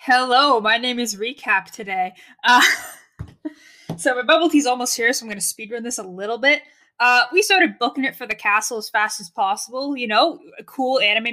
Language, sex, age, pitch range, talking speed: English, female, 20-39, 210-270 Hz, 200 wpm